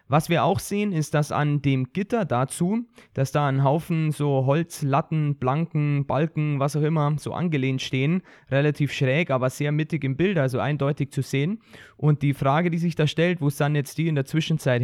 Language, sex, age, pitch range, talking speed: German, male, 20-39, 135-160 Hz, 200 wpm